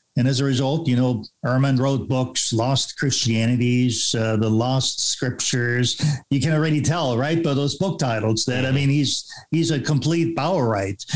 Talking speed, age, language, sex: 175 wpm, 50-69, English, male